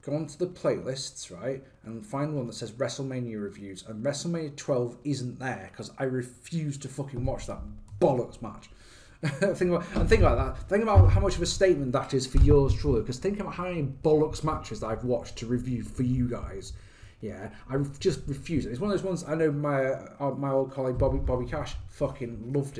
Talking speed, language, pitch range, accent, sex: 215 wpm, English, 115-145 Hz, British, male